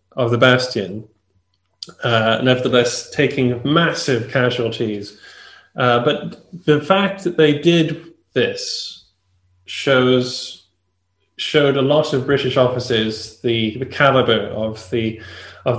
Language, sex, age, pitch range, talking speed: English, male, 20-39, 110-150 Hz, 115 wpm